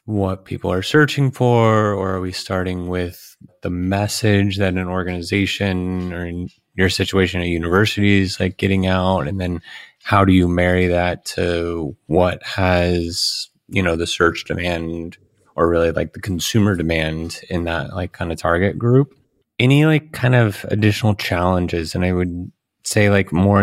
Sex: male